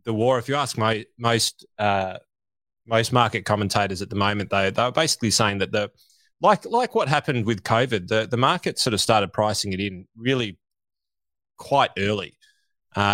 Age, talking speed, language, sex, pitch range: 20-39, 185 wpm, English, male, 100-125 Hz